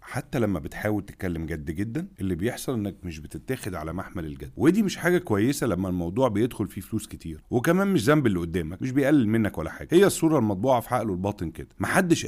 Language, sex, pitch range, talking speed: Arabic, male, 95-135 Hz, 205 wpm